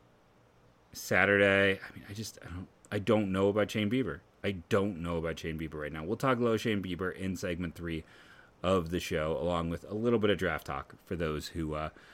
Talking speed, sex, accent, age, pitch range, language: 215 wpm, male, American, 30-49, 80-110 Hz, English